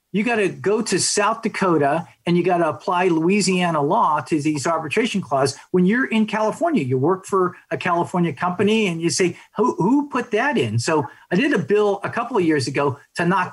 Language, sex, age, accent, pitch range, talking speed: English, male, 50-69, American, 145-200 Hz, 215 wpm